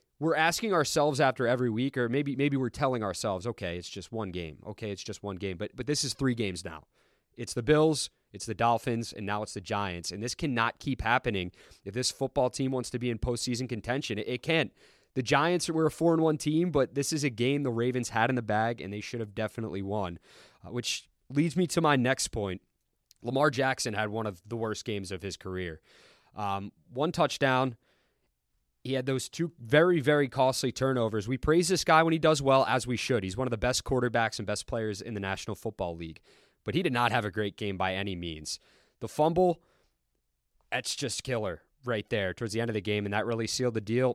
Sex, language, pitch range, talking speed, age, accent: male, English, 100-135 Hz, 230 wpm, 20-39, American